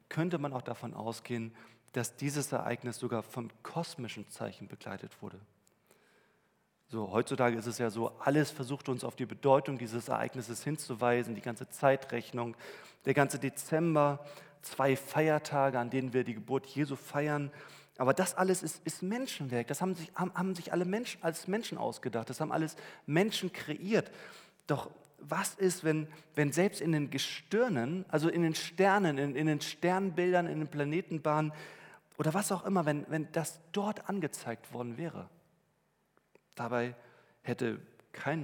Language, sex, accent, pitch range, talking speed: German, male, German, 120-160 Hz, 155 wpm